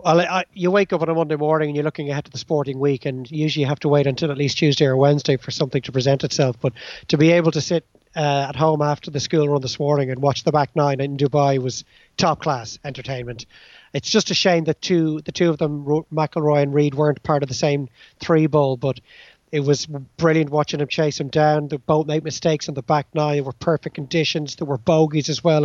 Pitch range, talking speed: 140-160 Hz, 250 wpm